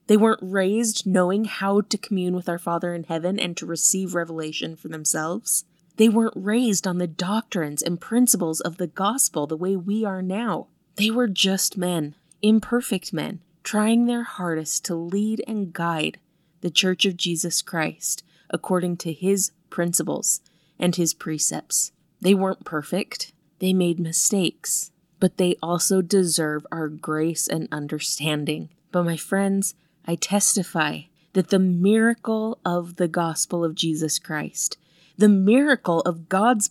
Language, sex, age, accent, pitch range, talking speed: English, female, 20-39, American, 165-205 Hz, 150 wpm